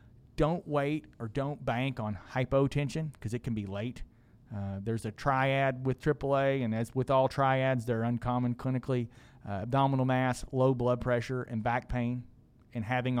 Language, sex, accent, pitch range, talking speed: English, male, American, 115-130 Hz, 170 wpm